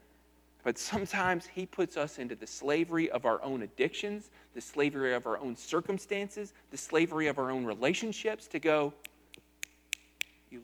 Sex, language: male, English